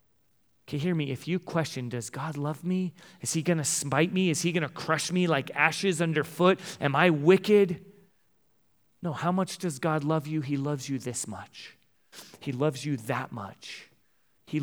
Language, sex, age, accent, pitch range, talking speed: English, male, 30-49, American, 125-170 Hz, 185 wpm